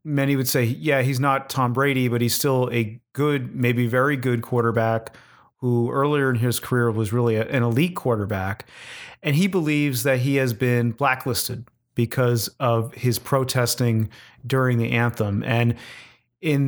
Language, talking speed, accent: English, 160 wpm, American